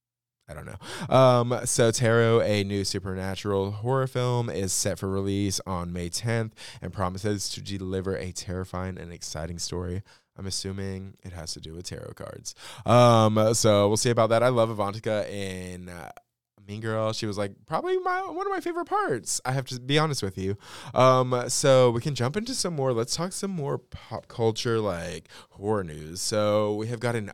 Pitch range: 95-115 Hz